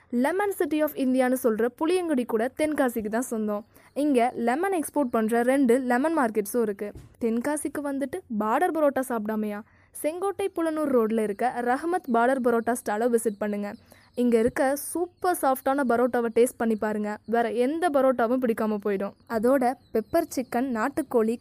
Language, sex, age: Tamil, female, 20-39